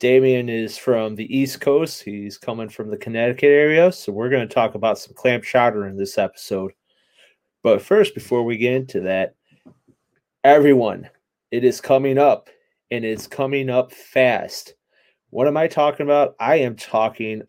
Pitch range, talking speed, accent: 115-140 Hz, 170 wpm, American